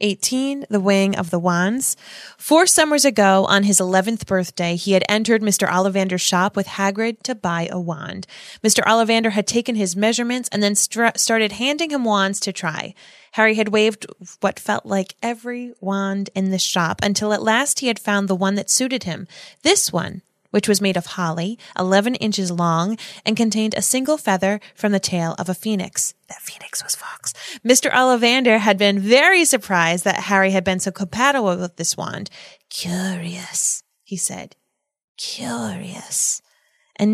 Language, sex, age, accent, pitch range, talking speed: English, female, 20-39, American, 190-240 Hz, 170 wpm